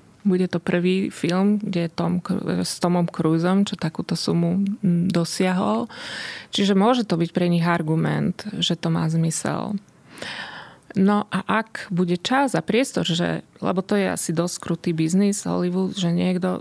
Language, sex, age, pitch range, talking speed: Slovak, female, 30-49, 165-185 Hz, 150 wpm